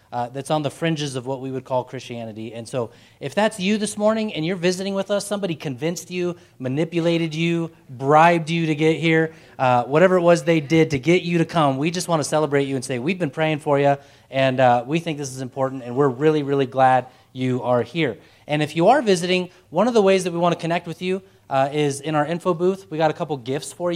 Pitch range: 130-170 Hz